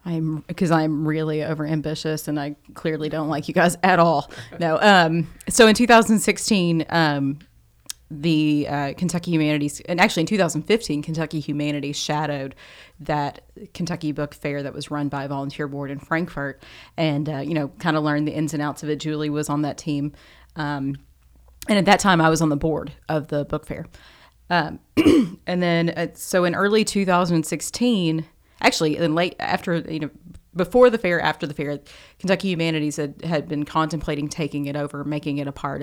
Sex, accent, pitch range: female, American, 145-170 Hz